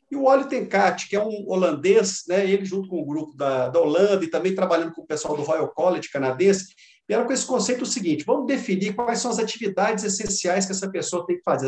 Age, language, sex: 50-69, Portuguese, male